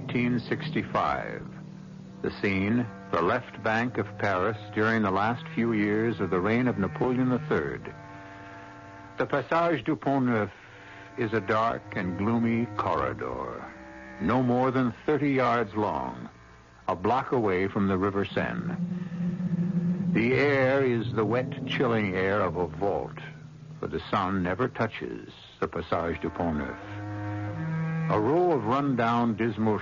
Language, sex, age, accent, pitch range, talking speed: English, male, 60-79, American, 100-135 Hz, 130 wpm